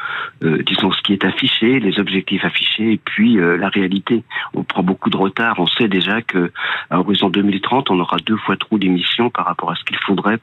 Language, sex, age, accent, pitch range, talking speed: French, male, 40-59, French, 95-110 Hz, 220 wpm